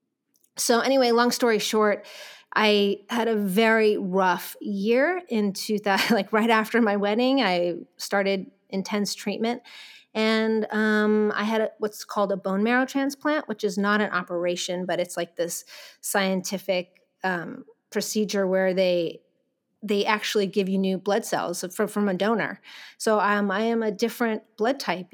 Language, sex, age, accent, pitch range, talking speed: English, female, 30-49, American, 205-250 Hz, 160 wpm